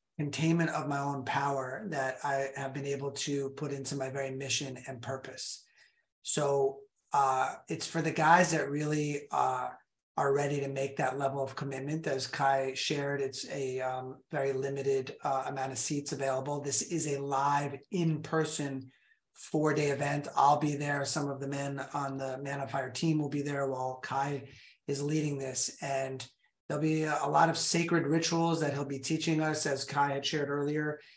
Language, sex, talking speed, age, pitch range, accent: English, male, 180 wpm, 30-49, 135-150 Hz, American